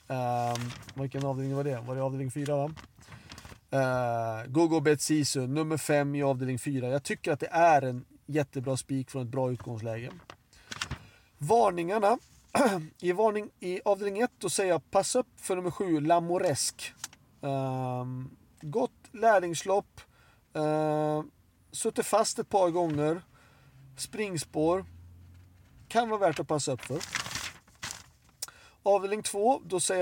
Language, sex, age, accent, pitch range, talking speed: Swedish, male, 40-59, native, 130-180 Hz, 135 wpm